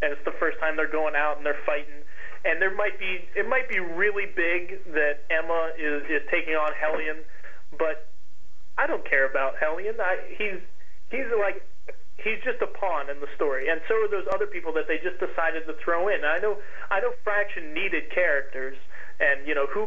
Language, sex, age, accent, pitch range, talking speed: English, male, 30-49, American, 155-195 Hz, 210 wpm